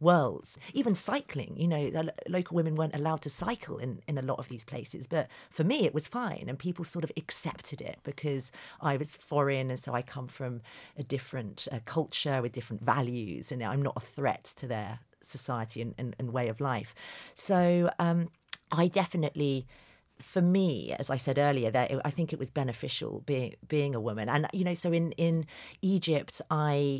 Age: 40-59